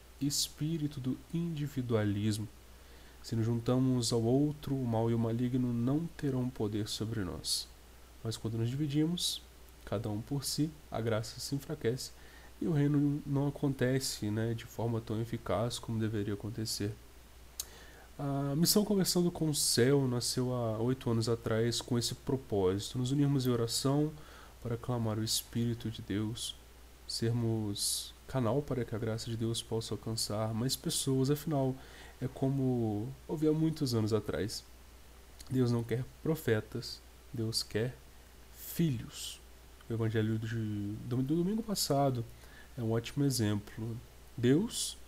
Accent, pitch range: Brazilian, 105-135 Hz